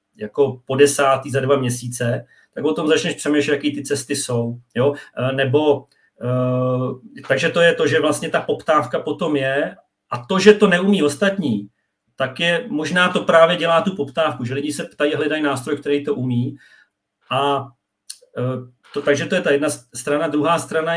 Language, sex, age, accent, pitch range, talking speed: Czech, male, 40-59, native, 135-160 Hz, 170 wpm